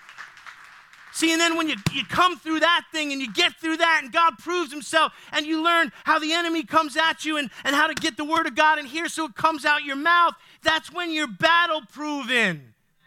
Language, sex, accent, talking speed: English, male, American, 225 wpm